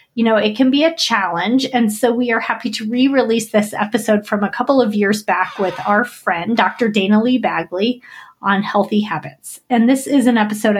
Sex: female